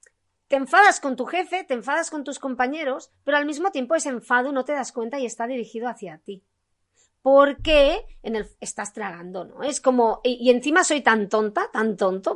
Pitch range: 220-290 Hz